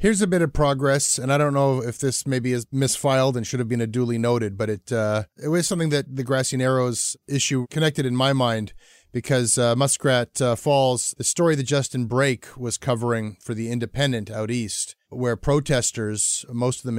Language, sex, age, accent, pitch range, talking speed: English, male, 30-49, American, 120-140 Hz, 205 wpm